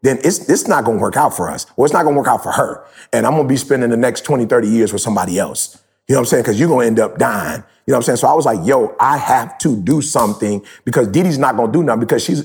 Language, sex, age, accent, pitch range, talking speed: English, male, 30-49, American, 120-165 Hz, 335 wpm